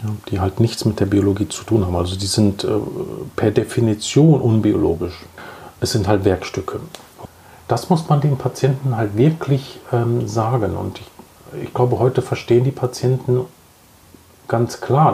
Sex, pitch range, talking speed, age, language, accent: male, 100-130 Hz, 155 wpm, 40-59, German, German